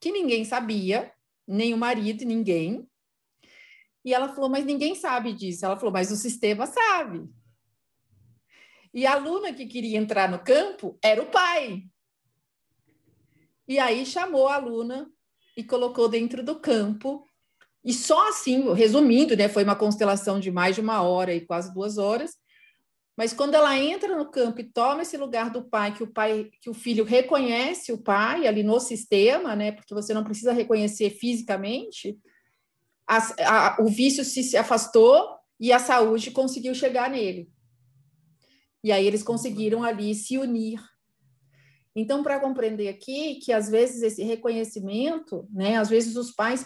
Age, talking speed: 40-59, 150 wpm